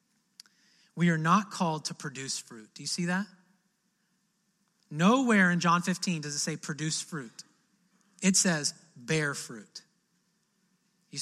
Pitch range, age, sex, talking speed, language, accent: 175-205 Hz, 30-49, male, 135 wpm, English, American